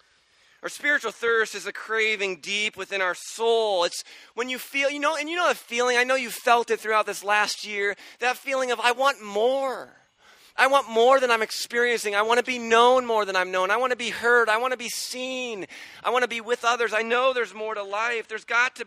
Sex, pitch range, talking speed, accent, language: male, 185-240 Hz, 240 wpm, American, English